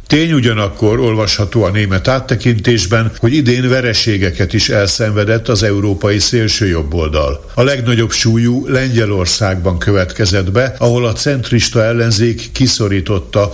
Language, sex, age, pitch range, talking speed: Hungarian, male, 60-79, 100-120 Hz, 110 wpm